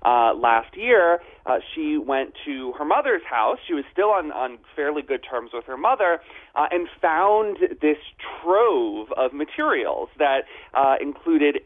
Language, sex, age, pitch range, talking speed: English, male, 30-49, 140-215 Hz, 160 wpm